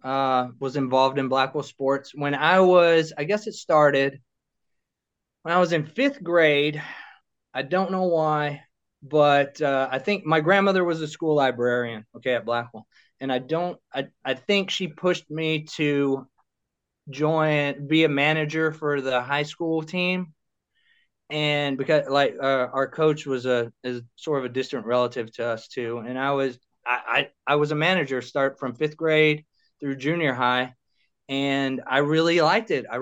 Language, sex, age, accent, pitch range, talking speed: English, male, 20-39, American, 130-155 Hz, 170 wpm